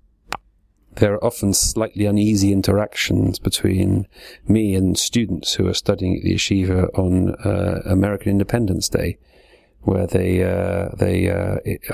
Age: 40-59